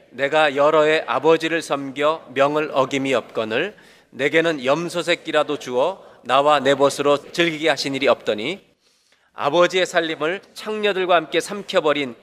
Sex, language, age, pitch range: male, Korean, 30-49, 125-165 Hz